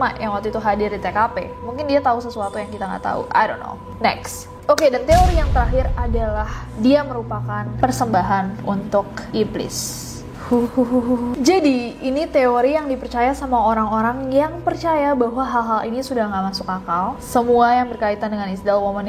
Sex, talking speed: female, 165 wpm